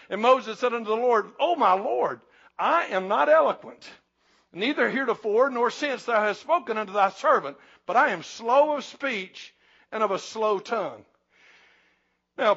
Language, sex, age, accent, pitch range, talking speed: English, male, 60-79, American, 205-270 Hz, 170 wpm